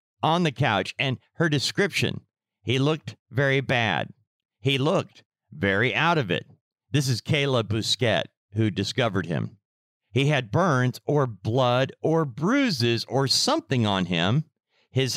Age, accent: 50-69, American